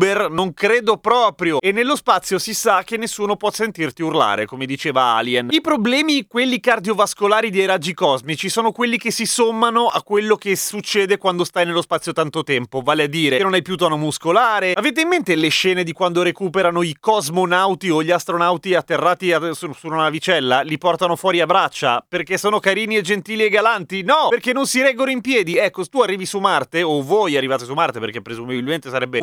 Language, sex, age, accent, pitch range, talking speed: Italian, male, 30-49, native, 150-225 Hz, 200 wpm